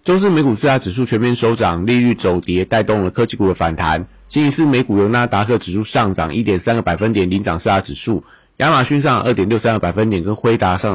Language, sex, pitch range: Chinese, male, 95-120 Hz